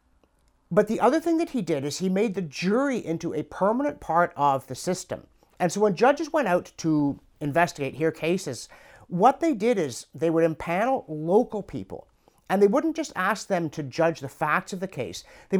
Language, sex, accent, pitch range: English, male, American, 140-205 Hz